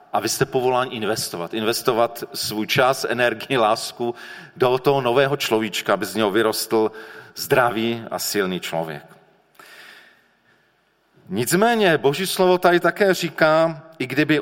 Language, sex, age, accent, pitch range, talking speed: Czech, male, 40-59, native, 115-150 Hz, 120 wpm